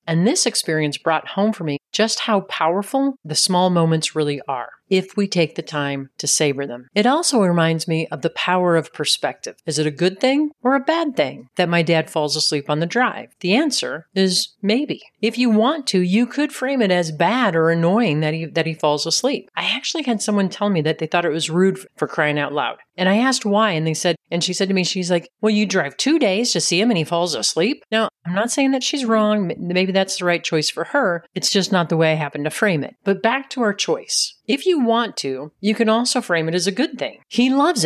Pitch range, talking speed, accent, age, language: 160-220 Hz, 250 wpm, American, 40-59, English